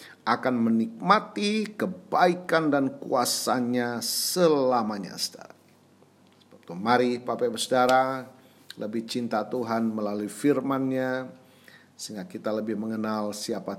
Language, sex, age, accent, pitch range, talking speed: Indonesian, male, 40-59, native, 110-165 Hz, 85 wpm